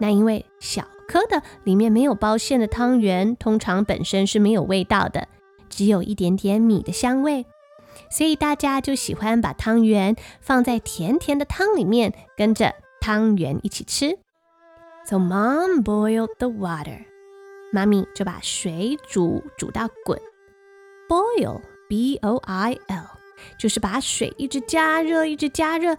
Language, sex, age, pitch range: Chinese, female, 20-39, 210-330 Hz